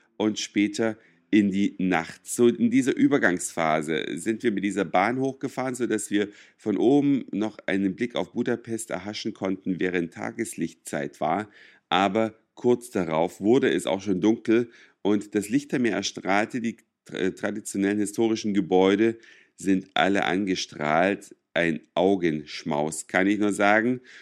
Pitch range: 95-120 Hz